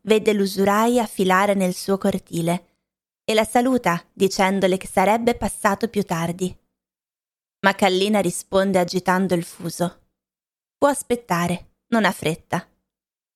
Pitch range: 185-245 Hz